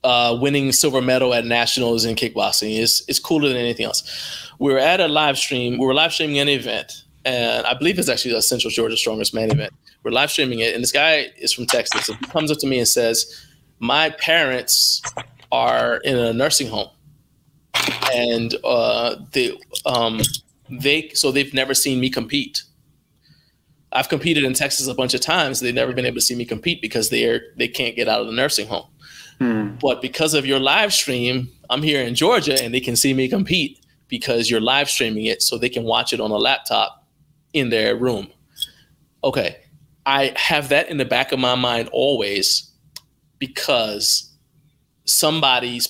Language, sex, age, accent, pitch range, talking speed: English, male, 20-39, American, 120-145 Hz, 185 wpm